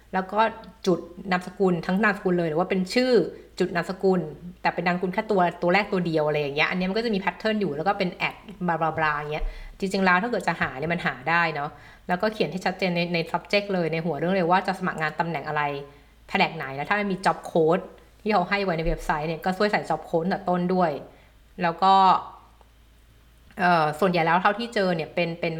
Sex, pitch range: female, 160-195 Hz